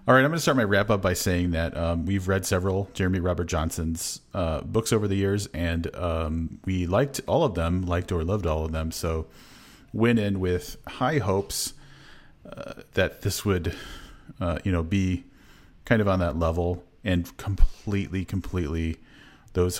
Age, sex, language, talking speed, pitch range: 40-59, male, English, 180 wpm, 85-100 Hz